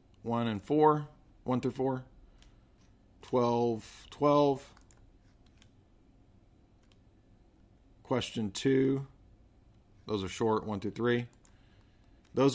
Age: 40-59